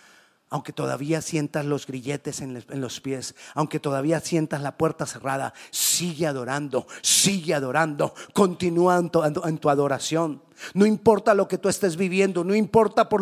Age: 40-59